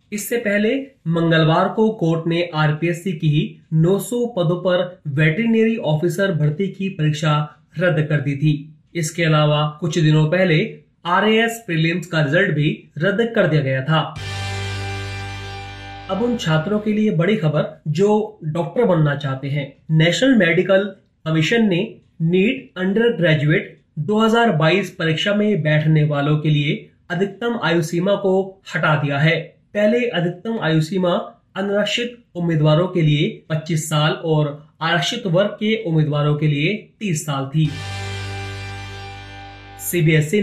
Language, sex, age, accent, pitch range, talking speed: Hindi, male, 30-49, native, 155-205 Hz, 130 wpm